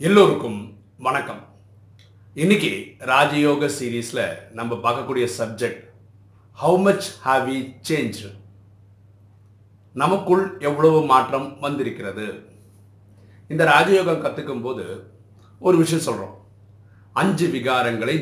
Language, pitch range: Tamil, 100-160 Hz